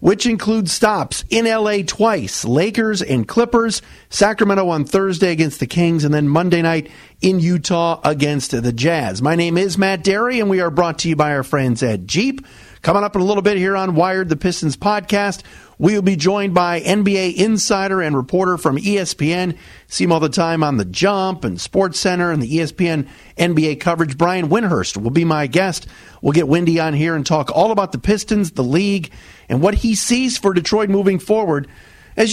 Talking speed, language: 195 wpm, English